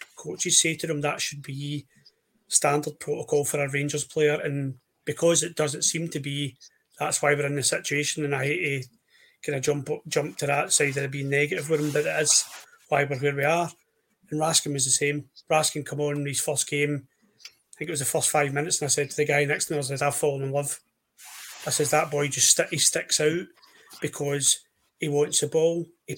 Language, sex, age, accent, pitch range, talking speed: English, male, 30-49, British, 145-155 Hz, 225 wpm